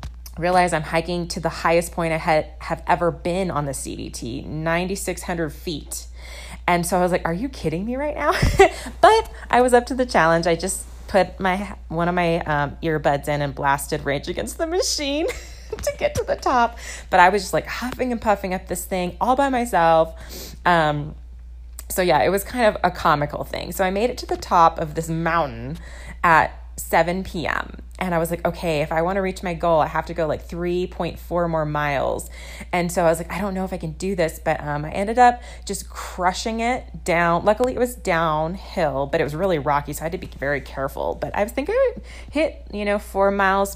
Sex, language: female, English